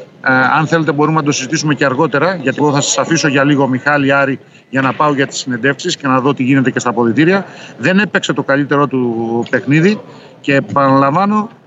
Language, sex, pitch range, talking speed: Greek, male, 140-170 Hz, 200 wpm